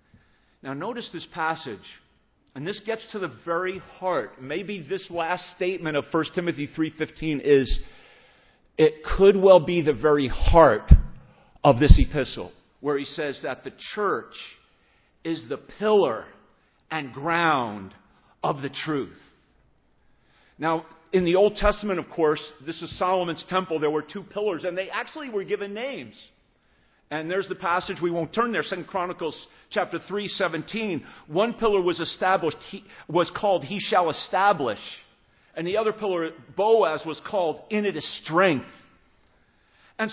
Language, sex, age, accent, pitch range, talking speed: English, male, 50-69, American, 160-225 Hz, 150 wpm